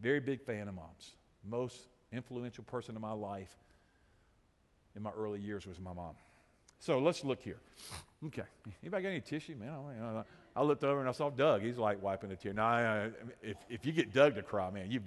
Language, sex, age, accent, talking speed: English, male, 50-69, American, 225 wpm